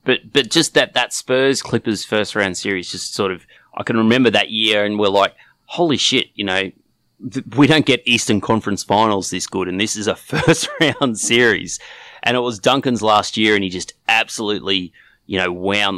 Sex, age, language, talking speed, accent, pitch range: male, 30-49, English, 200 wpm, Australian, 95-110 Hz